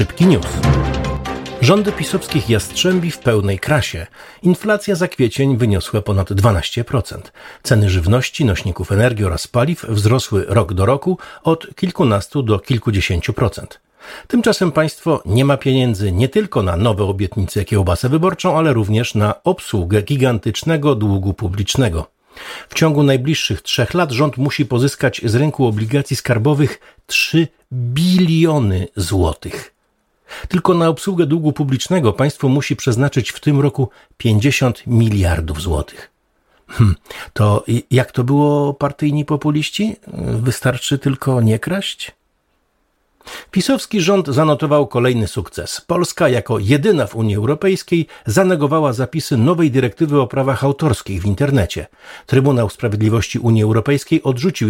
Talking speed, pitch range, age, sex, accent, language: 125 wpm, 105-150 Hz, 50-69, male, native, Polish